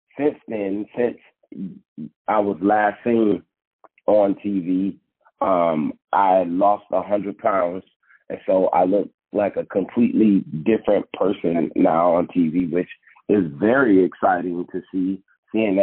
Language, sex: English, male